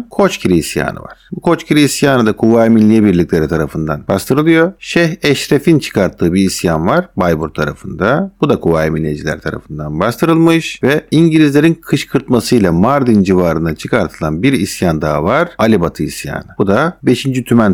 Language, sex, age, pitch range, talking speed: Turkish, male, 50-69, 95-155 Hz, 145 wpm